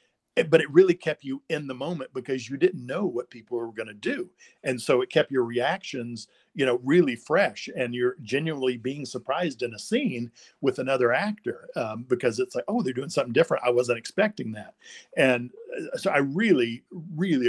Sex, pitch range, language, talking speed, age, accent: male, 120-155 Hz, English, 195 wpm, 50-69, American